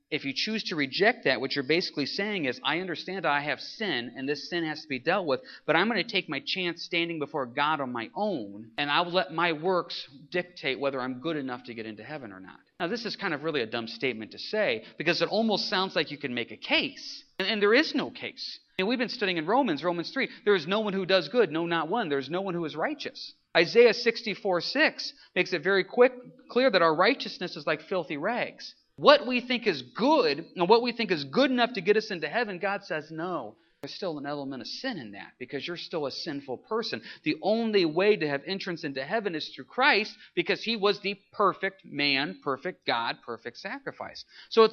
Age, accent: 40-59, American